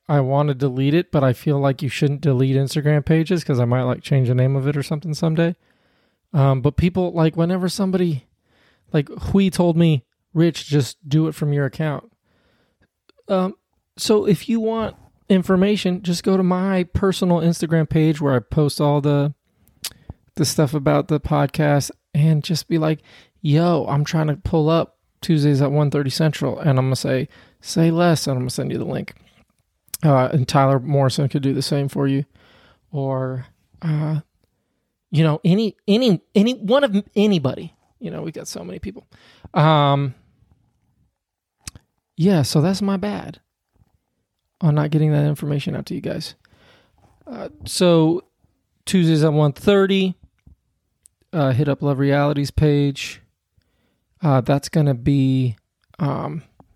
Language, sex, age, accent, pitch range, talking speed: English, male, 20-39, American, 135-170 Hz, 165 wpm